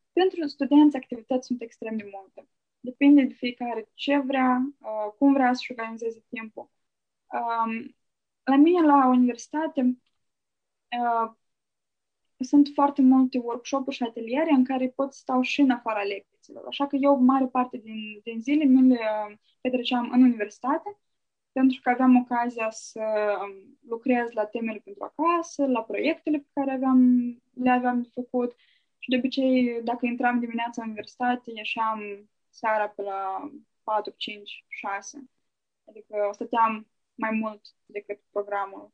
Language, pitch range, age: Romanian, 220-270 Hz, 20-39